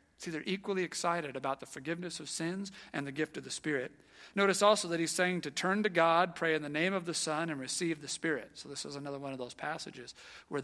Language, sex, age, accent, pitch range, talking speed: English, male, 40-59, American, 155-200 Hz, 250 wpm